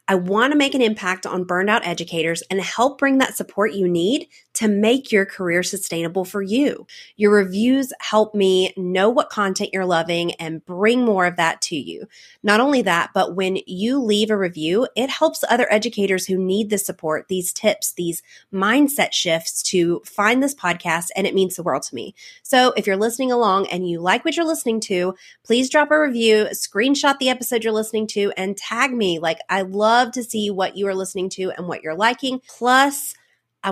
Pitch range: 180-250 Hz